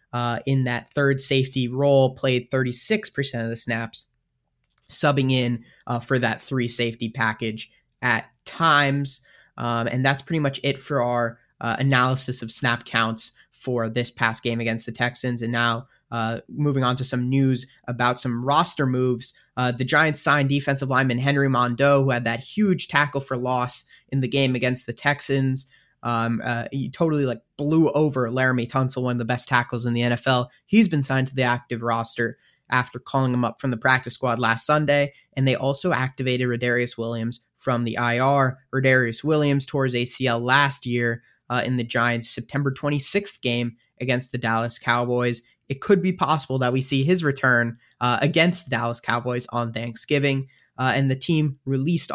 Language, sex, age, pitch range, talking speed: English, male, 20-39, 120-140 Hz, 180 wpm